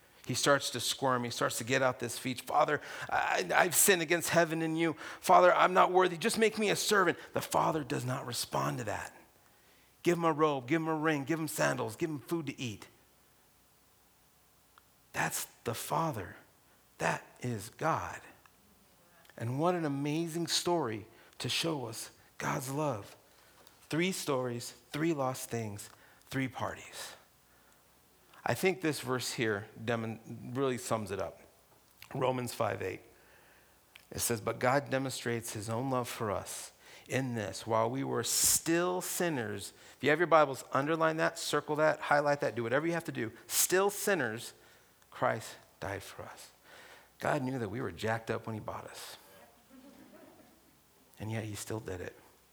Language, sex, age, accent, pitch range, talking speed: English, male, 40-59, American, 115-165 Hz, 160 wpm